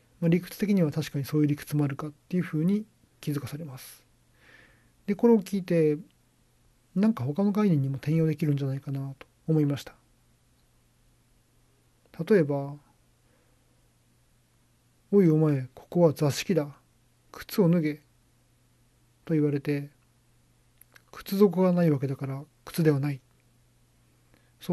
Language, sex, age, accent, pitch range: Japanese, male, 40-59, native, 125-160 Hz